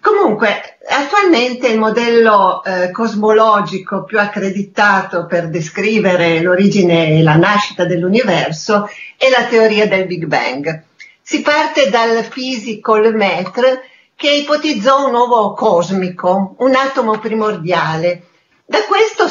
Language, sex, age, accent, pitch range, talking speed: Italian, female, 40-59, native, 190-290 Hz, 110 wpm